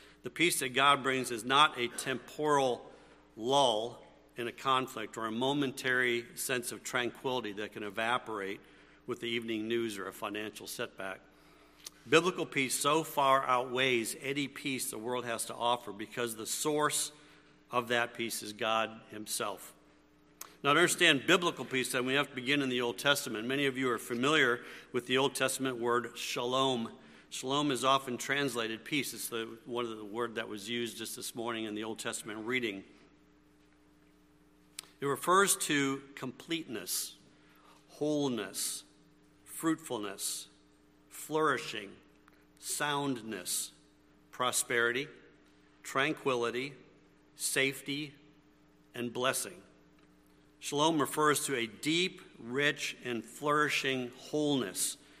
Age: 50-69